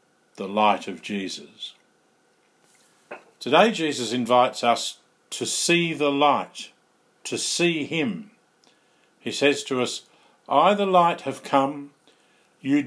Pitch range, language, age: 115-165 Hz, English, 50-69